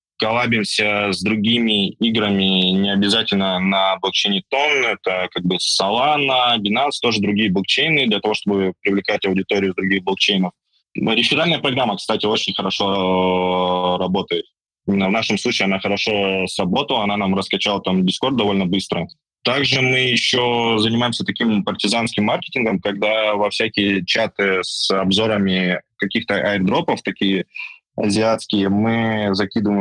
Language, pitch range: Russian, 95-115 Hz